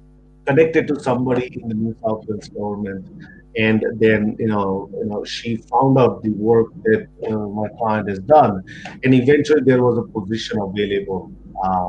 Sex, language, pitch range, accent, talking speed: male, English, 105-130 Hz, Indian, 165 wpm